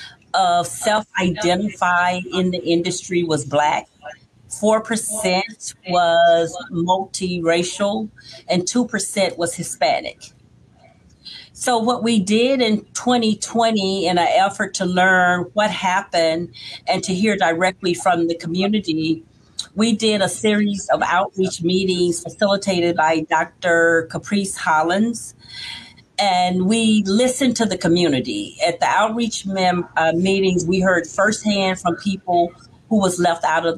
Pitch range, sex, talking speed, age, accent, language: 165-205 Hz, female, 125 wpm, 40-59, American, English